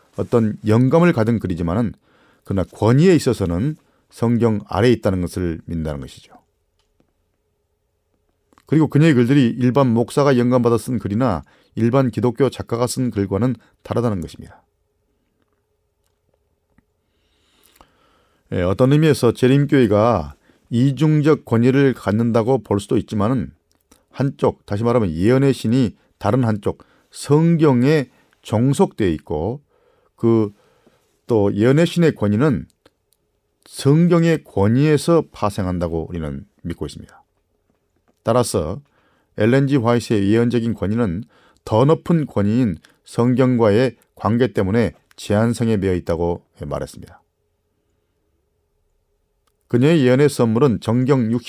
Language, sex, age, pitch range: Korean, male, 40-59, 100-135 Hz